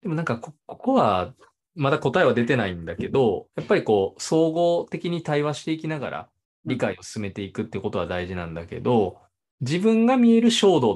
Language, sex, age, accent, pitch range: Japanese, male, 20-39, native, 115-180 Hz